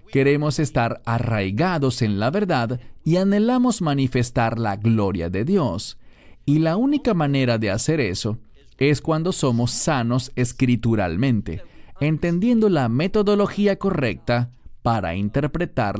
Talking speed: 115 wpm